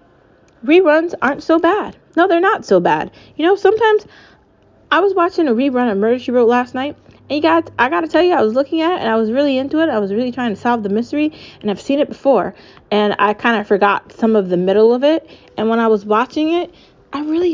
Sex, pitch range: female, 185-280 Hz